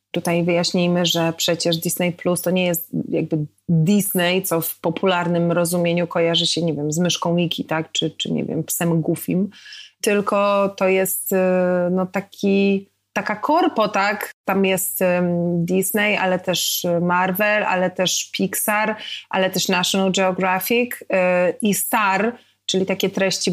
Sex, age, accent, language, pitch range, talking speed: female, 20-39, native, Polish, 175-200 Hz, 140 wpm